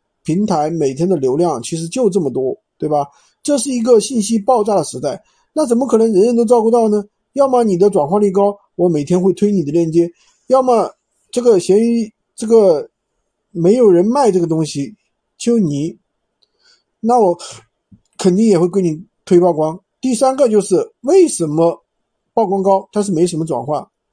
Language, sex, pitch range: Chinese, male, 170-230 Hz